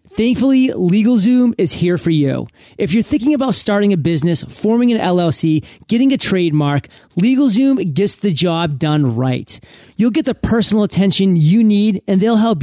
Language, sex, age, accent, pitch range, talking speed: English, male, 30-49, American, 165-225 Hz, 165 wpm